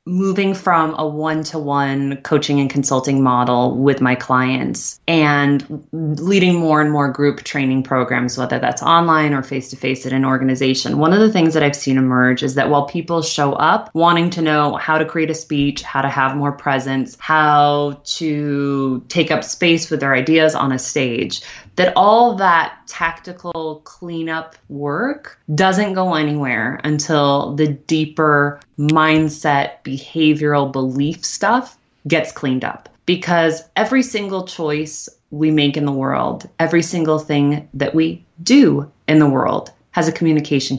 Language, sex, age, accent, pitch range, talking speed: English, female, 20-39, American, 140-170 Hz, 155 wpm